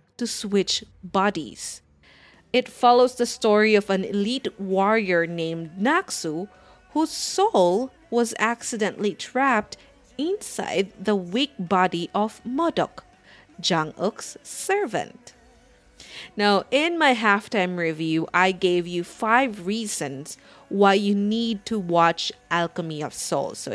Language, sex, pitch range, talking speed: English, female, 180-240 Hz, 115 wpm